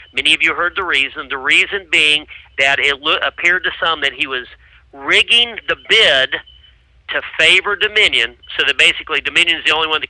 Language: English